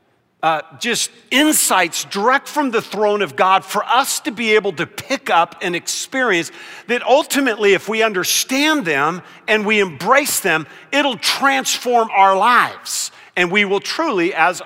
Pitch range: 180-245 Hz